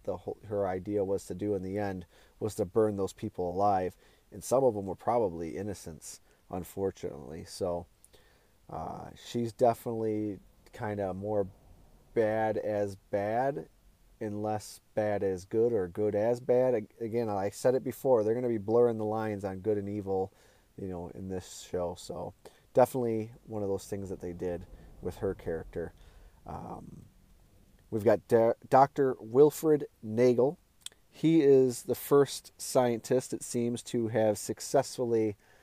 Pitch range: 100-120 Hz